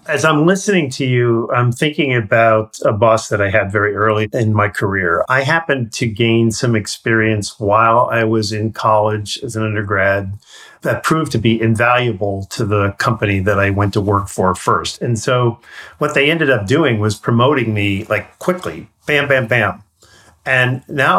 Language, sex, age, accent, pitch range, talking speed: English, male, 50-69, American, 110-135 Hz, 180 wpm